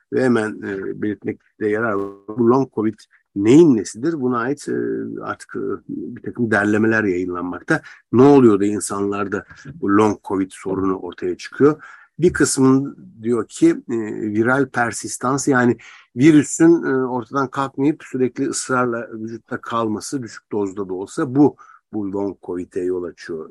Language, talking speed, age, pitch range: Turkish, 140 wpm, 60-79, 105-135 Hz